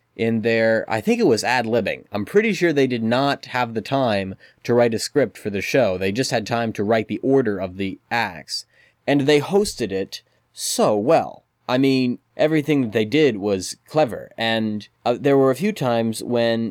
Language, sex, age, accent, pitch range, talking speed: English, male, 20-39, American, 100-135 Hz, 200 wpm